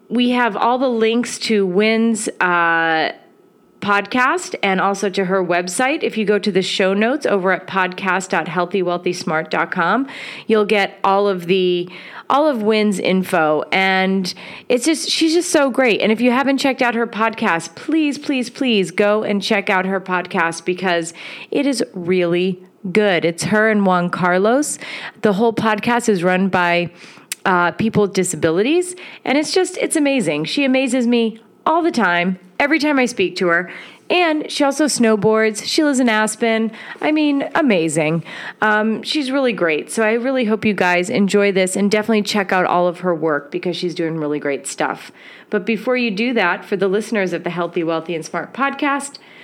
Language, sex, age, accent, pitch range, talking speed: English, female, 30-49, American, 180-240 Hz, 175 wpm